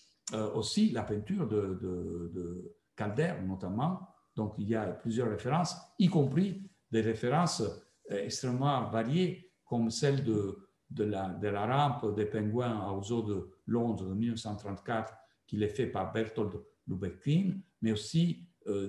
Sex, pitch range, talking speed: male, 110-165 Hz, 150 wpm